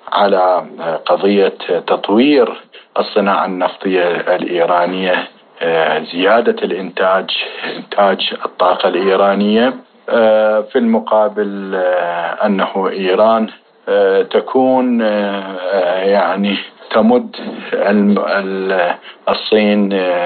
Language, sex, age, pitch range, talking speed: Arabic, male, 50-69, 95-110 Hz, 55 wpm